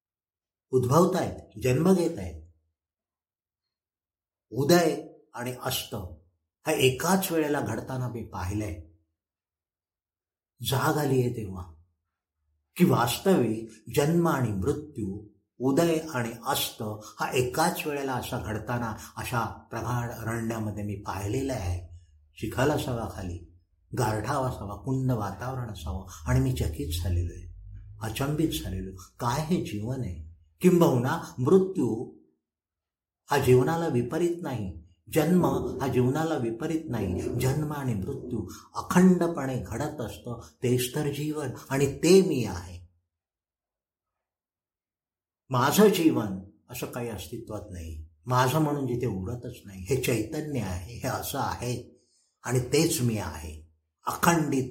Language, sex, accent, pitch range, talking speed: Marathi, male, native, 90-135 Hz, 70 wpm